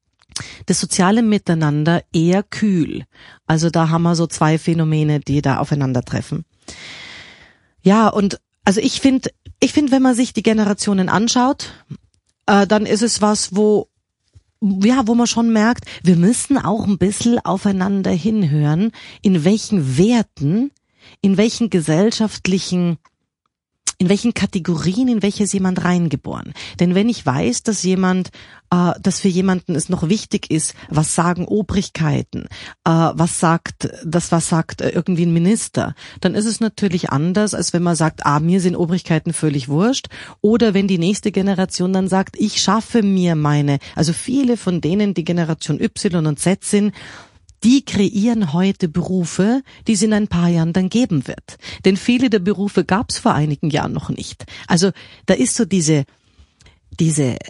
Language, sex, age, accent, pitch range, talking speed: German, female, 30-49, German, 160-210 Hz, 160 wpm